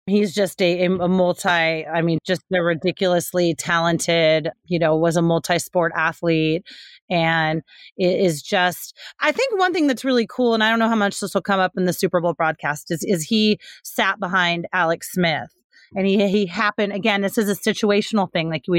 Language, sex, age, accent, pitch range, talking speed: English, female, 30-49, American, 180-210 Hz, 200 wpm